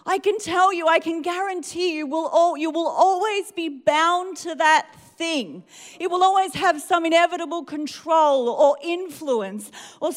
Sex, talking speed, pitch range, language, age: female, 165 wpm, 275-345 Hz, English, 40-59